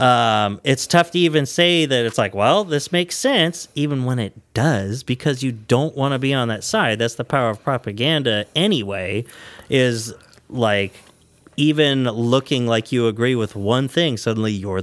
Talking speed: 180 wpm